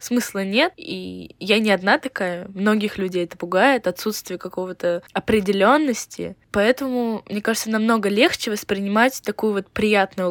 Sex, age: female, 20-39